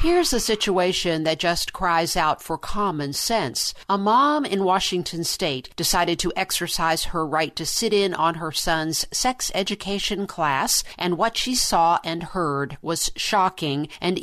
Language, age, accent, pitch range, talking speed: English, 50-69, American, 160-210 Hz, 160 wpm